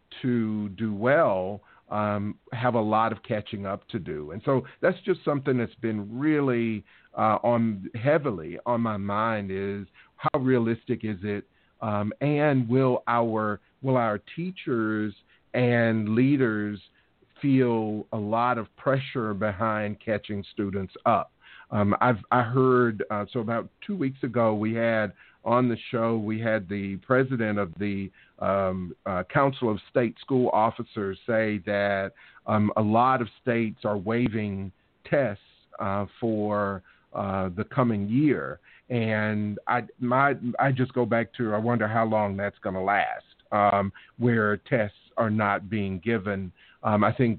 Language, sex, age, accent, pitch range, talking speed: English, male, 50-69, American, 105-125 Hz, 150 wpm